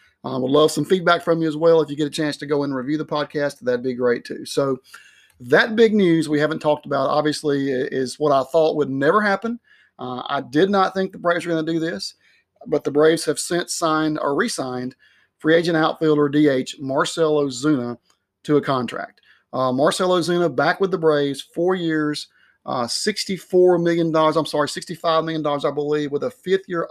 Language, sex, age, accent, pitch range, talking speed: English, male, 30-49, American, 140-165 Hz, 200 wpm